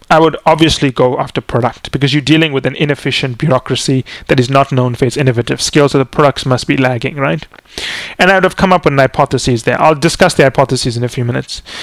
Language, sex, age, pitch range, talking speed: English, male, 30-49, 135-175 Hz, 230 wpm